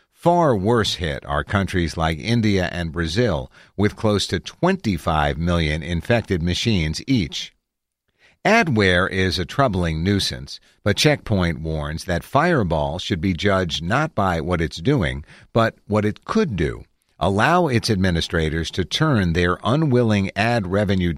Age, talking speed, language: 50-69, 140 wpm, English